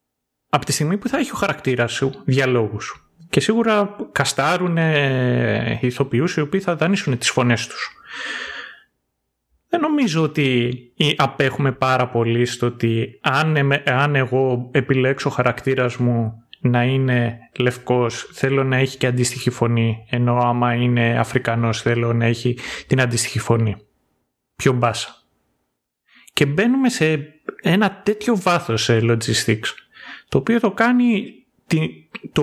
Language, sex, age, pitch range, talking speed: Greek, male, 30-49, 115-165 Hz, 125 wpm